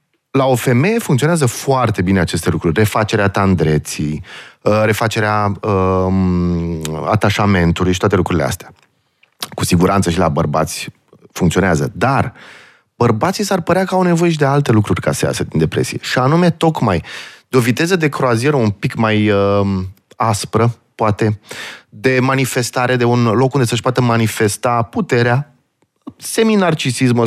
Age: 30-49